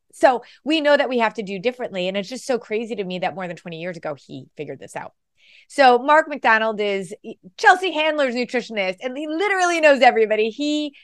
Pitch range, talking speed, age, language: 175-245 Hz, 210 wpm, 30-49, English